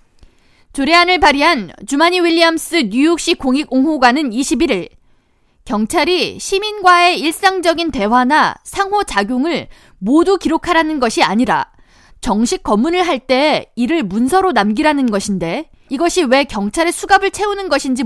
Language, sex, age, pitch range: Korean, female, 20-39, 235-335 Hz